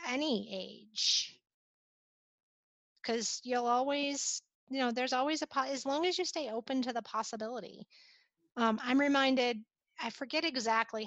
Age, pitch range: 30-49, 220-280 Hz